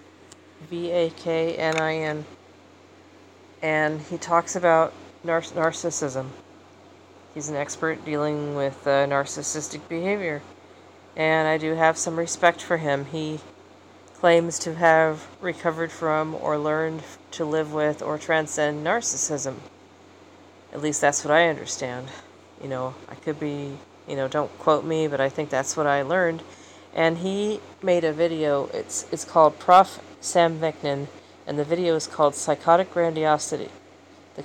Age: 40-59